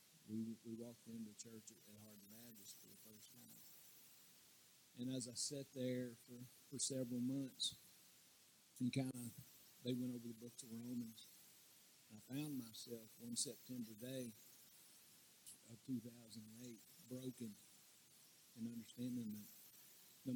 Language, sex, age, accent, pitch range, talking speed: English, male, 50-69, American, 115-135 Hz, 135 wpm